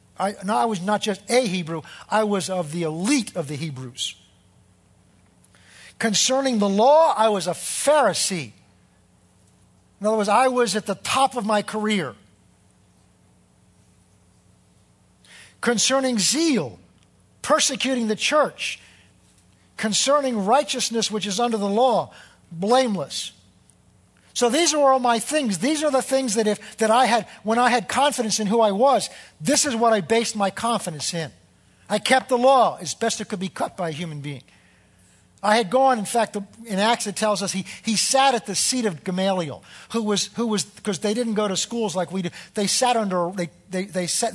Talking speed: 175 wpm